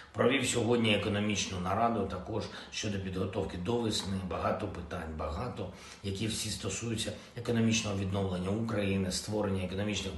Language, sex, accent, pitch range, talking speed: Ukrainian, male, native, 95-115 Hz, 120 wpm